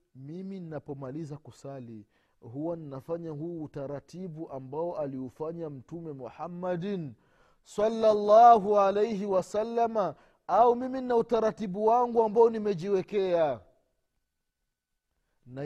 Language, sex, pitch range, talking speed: Swahili, male, 145-230 Hz, 85 wpm